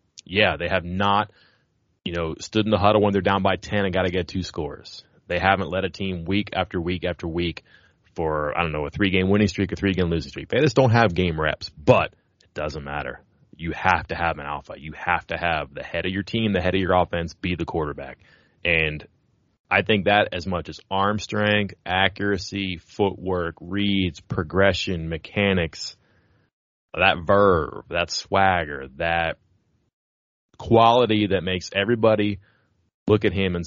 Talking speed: 185 wpm